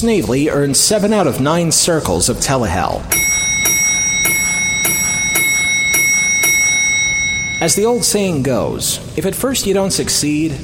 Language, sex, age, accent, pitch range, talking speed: English, male, 30-49, American, 130-180 Hz, 115 wpm